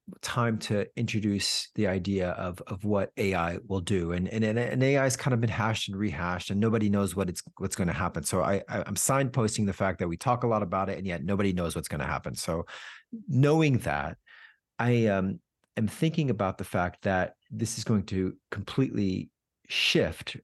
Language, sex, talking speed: English, male, 205 wpm